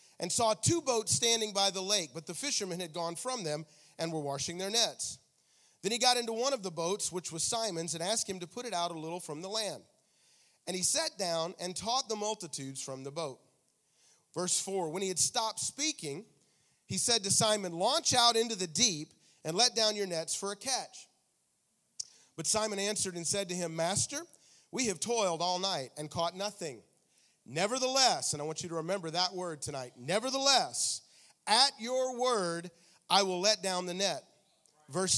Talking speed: 195 wpm